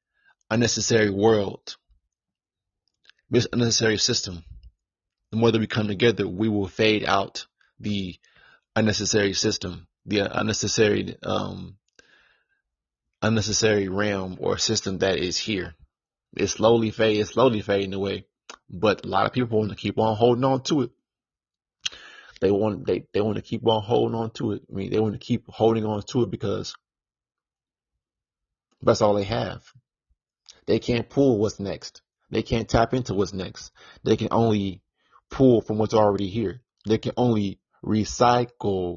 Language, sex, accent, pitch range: English, male, American, 100-115 Hz